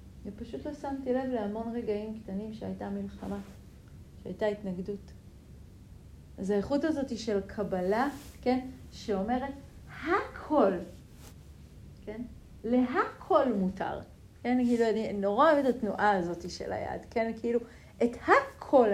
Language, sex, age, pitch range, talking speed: Hebrew, female, 40-59, 205-290 Hz, 115 wpm